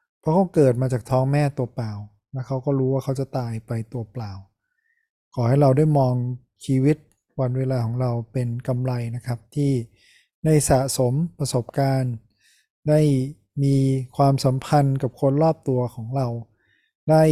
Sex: male